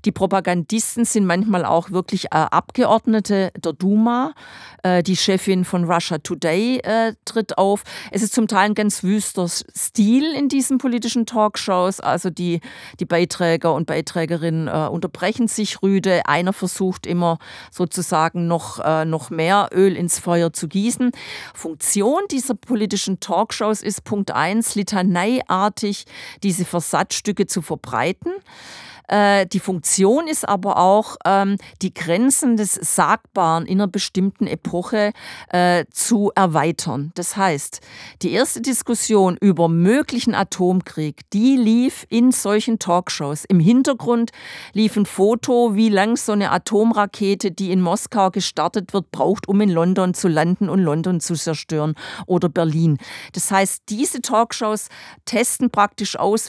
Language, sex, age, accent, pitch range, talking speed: German, female, 40-59, German, 175-220 Hz, 135 wpm